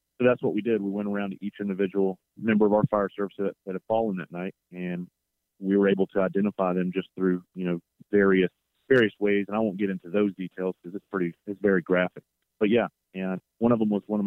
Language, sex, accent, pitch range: English, male, American, 90-105 Hz